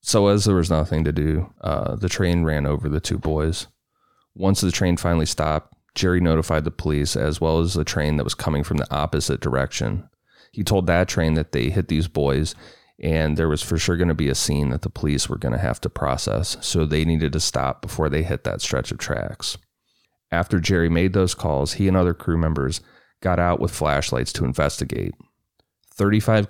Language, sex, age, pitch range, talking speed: English, male, 30-49, 80-90 Hz, 210 wpm